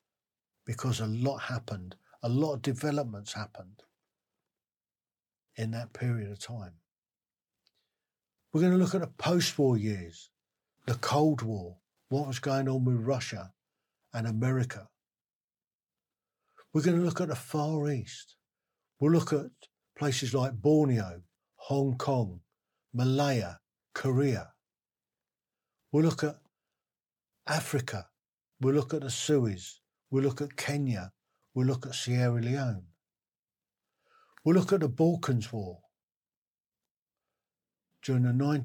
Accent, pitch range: British, 110-150 Hz